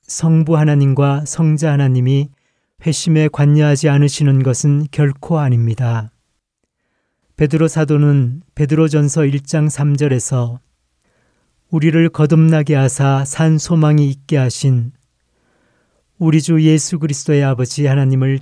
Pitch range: 135-155 Hz